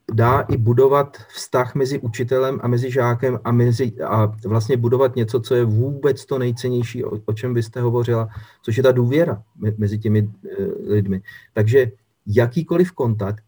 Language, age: Czech, 40-59